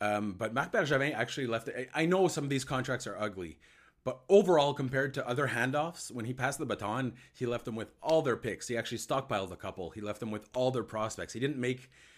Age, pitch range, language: 30-49, 105-130 Hz, English